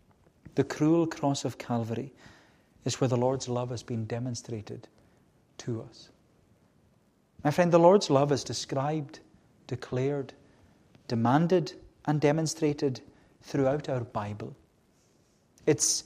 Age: 40-59